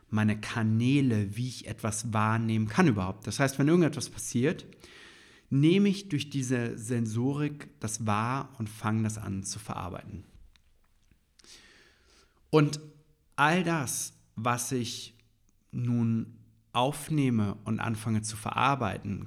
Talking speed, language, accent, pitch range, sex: 115 wpm, German, German, 105-135 Hz, male